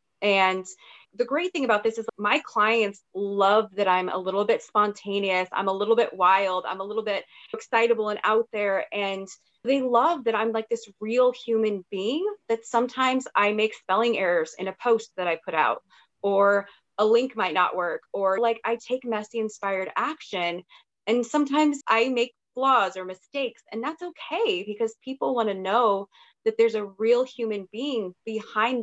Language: English